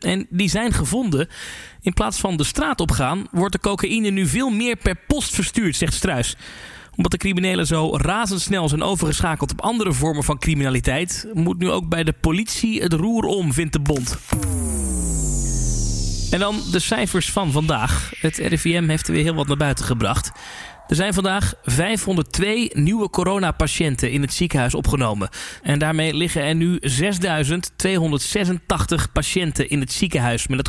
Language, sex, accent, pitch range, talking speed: Dutch, male, Dutch, 140-195 Hz, 160 wpm